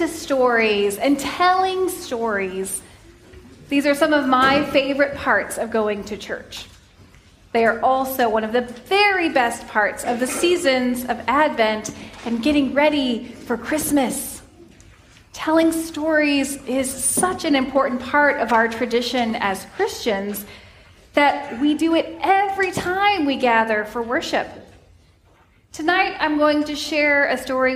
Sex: female